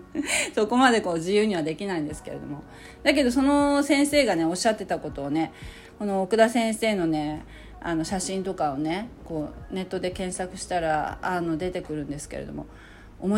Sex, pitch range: female, 155-230 Hz